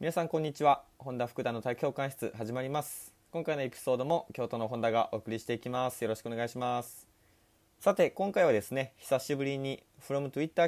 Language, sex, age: Japanese, male, 20-39